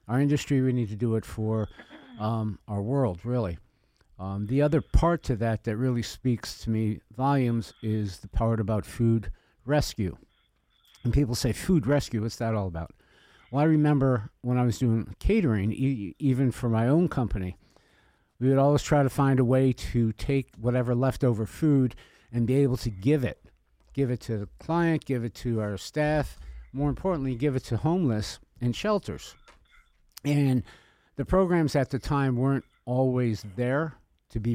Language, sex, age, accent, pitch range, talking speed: English, male, 50-69, American, 110-135 Hz, 175 wpm